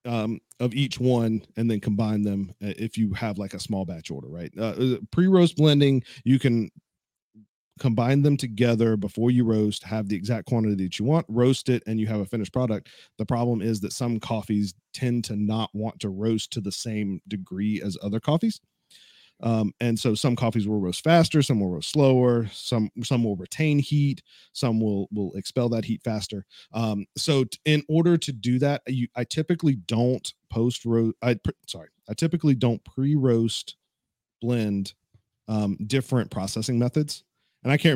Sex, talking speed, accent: male, 180 wpm, American